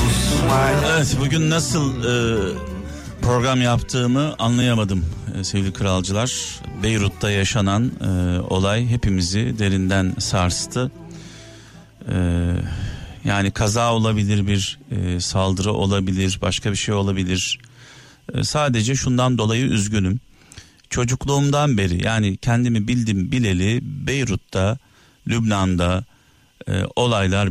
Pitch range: 95-125 Hz